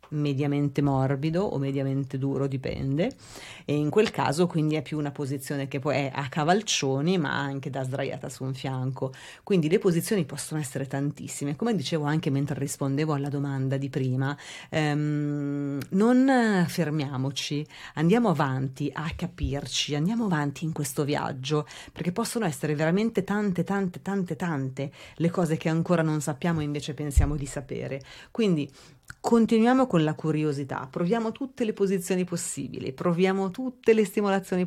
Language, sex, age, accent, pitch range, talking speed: Italian, female, 30-49, native, 145-185 Hz, 150 wpm